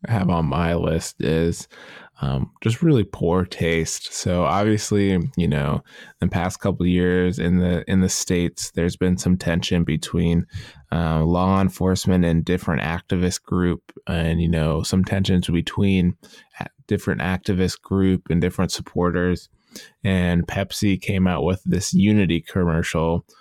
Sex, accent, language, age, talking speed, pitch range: male, American, English, 20-39, 140 wpm, 85-95 Hz